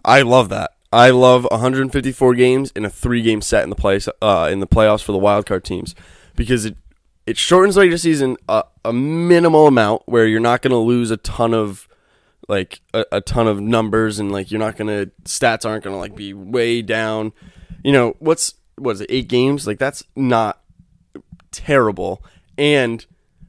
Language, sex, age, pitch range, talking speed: English, male, 20-39, 105-130 Hz, 190 wpm